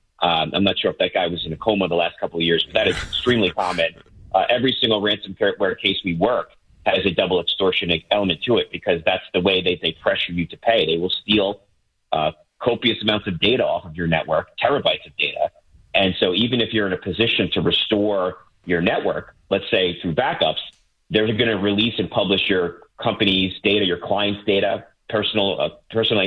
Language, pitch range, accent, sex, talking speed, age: English, 90-110 Hz, American, male, 200 wpm, 30-49